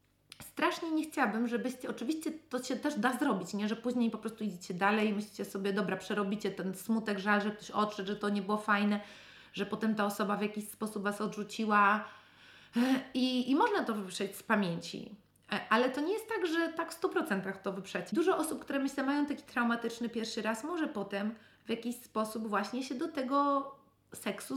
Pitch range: 210-260 Hz